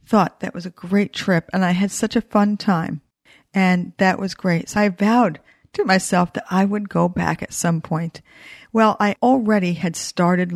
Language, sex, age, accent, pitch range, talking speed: English, female, 50-69, American, 175-210 Hz, 200 wpm